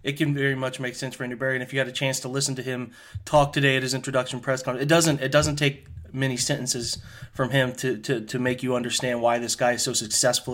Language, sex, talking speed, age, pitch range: English, male, 270 wpm, 30-49, 120-145 Hz